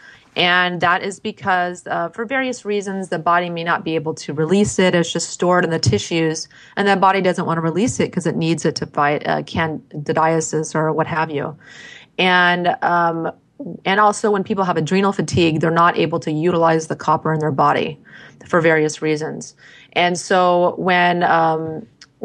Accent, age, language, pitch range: American, 30-49, English, 160-180 Hz